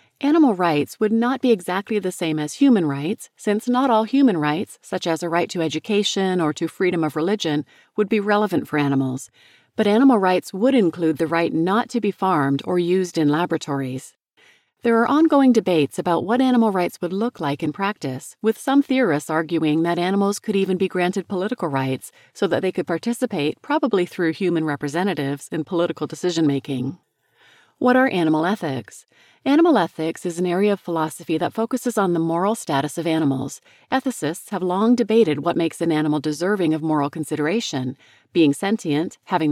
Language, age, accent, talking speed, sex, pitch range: English, 40-59, American, 180 wpm, female, 155-210 Hz